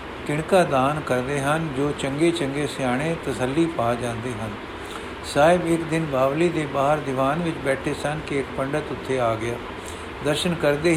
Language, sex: Punjabi, male